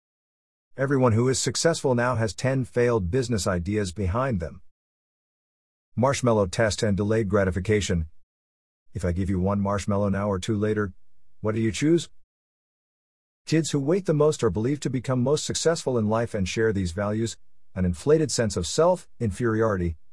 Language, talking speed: English, 160 wpm